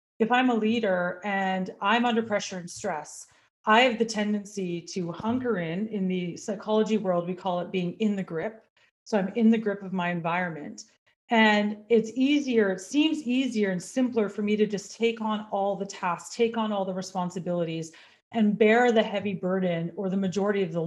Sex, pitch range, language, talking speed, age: female, 190-235 Hz, English, 195 wpm, 30-49